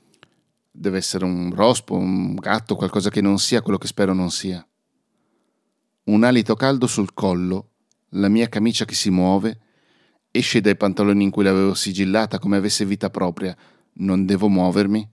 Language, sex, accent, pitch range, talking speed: Italian, male, native, 100-120 Hz, 160 wpm